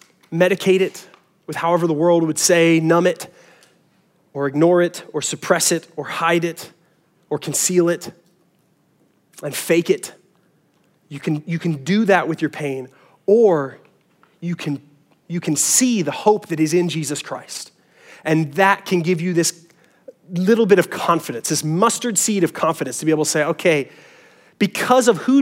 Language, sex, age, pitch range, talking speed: English, male, 30-49, 170-240 Hz, 170 wpm